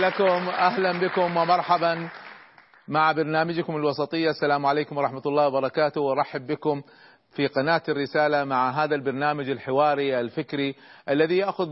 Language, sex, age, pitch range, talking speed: Arabic, male, 40-59, 135-165 Hz, 125 wpm